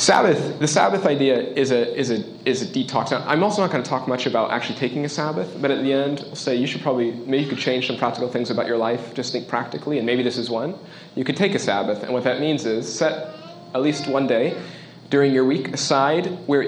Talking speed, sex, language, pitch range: 255 wpm, male, English, 120-150 Hz